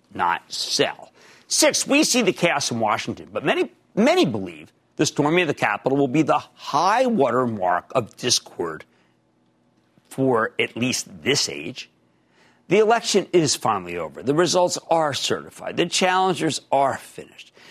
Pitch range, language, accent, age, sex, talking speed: 125-195 Hz, English, American, 50-69, male, 145 wpm